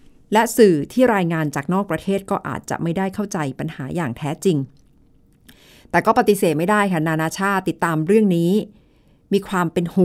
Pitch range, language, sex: 160-230 Hz, Thai, female